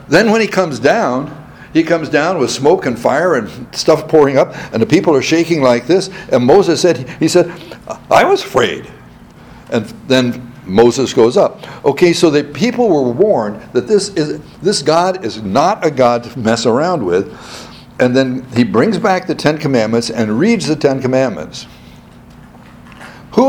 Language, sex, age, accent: English, male, 60-79, American